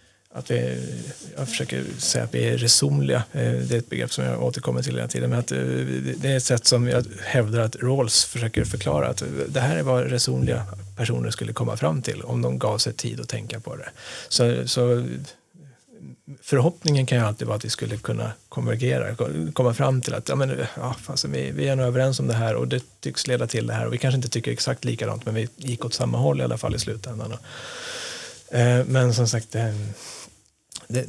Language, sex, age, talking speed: Swedish, male, 30-49, 220 wpm